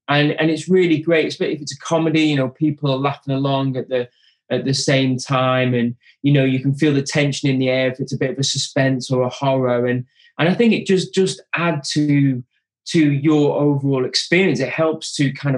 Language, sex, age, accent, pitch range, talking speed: English, male, 20-39, British, 125-145 Hz, 230 wpm